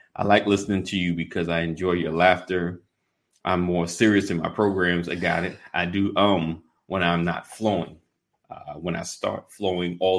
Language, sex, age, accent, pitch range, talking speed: English, male, 30-49, American, 90-105 Hz, 190 wpm